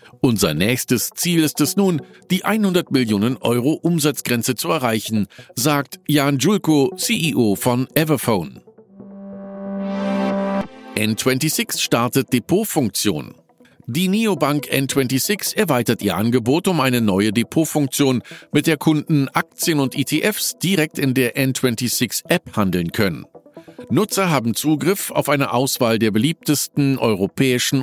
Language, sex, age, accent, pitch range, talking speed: German, male, 50-69, German, 125-175 Hz, 115 wpm